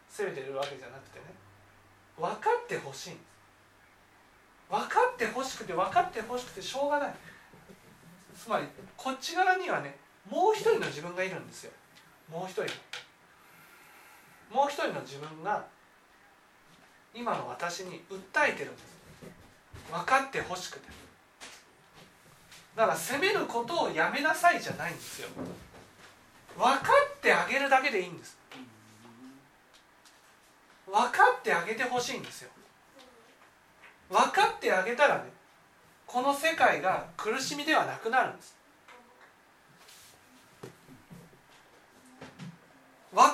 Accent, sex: native, male